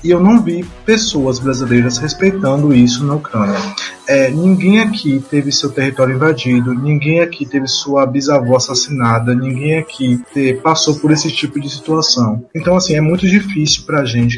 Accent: Brazilian